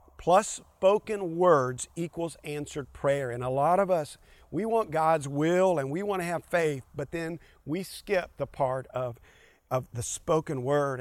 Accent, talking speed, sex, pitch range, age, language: American, 175 wpm, male, 145-185 Hz, 40-59, English